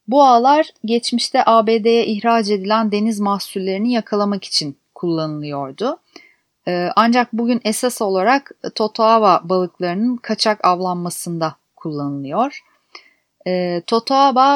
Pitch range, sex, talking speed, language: 185-240 Hz, female, 85 wpm, Turkish